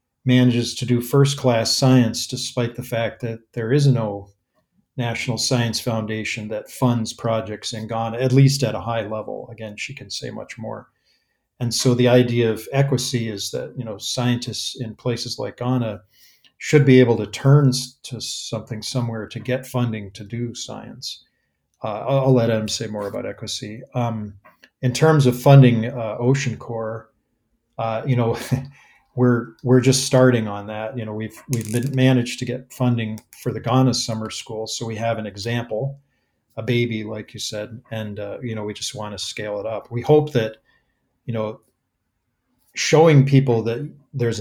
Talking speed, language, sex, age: 175 wpm, English, male, 40-59